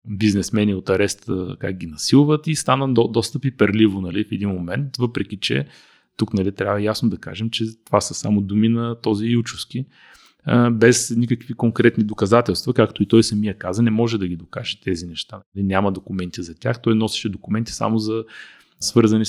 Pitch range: 105-135 Hz